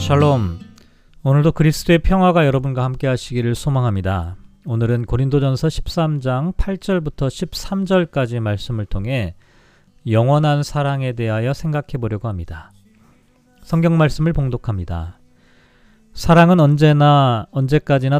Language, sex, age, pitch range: Korean, male, 40-59, 115-155 Hz